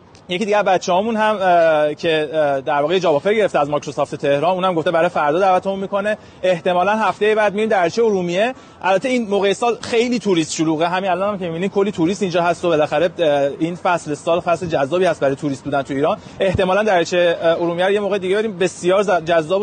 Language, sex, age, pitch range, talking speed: Persian, male, 30-49, 160-200 Hz, 190 wpm